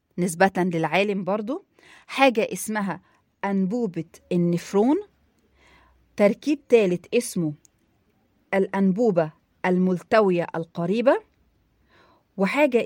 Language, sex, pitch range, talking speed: Arabic, female, 165-220 Hz, 65 wpm